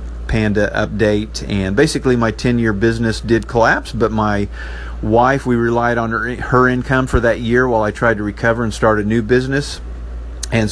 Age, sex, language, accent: 50-69, male, English, American